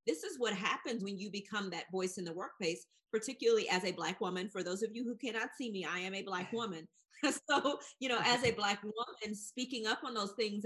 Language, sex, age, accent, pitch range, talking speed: English, female, 30-49, American, 185-235 Hz, 235 wpm